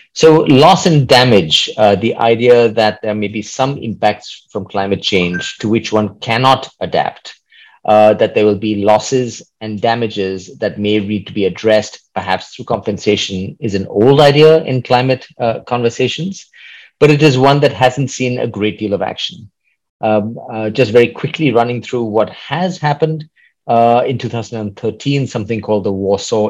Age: 30-49